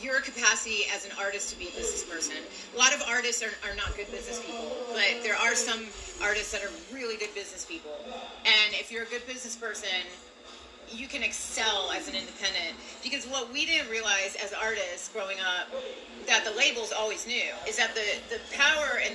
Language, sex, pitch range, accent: English, female, 205-255 Hz, American